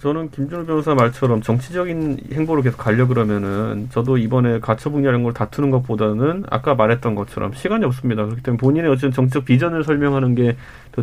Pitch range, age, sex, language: 125-170 Hz, 30-49, male, Korean